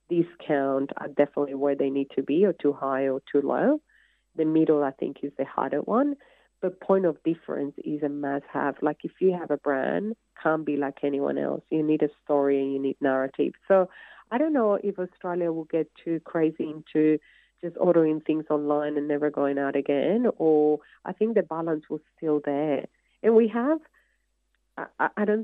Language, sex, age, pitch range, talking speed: English, female, 40-59, 145-175 Hz, 195 wpm